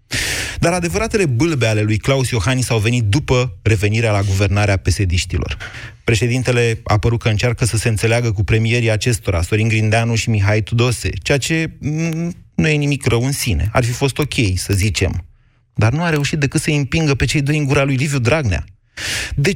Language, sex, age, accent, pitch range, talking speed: Romanian, male, 30-49, native, 100-130 Hz, 190 wpm